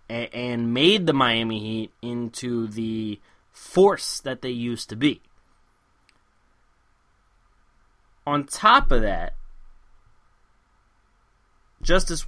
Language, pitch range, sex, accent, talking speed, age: English, 120-170 Hz, male, American, 90 wpm, 20-39